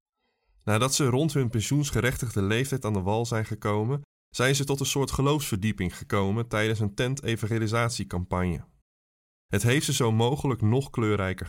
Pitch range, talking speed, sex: 100-125 Hz, 145 wpm, male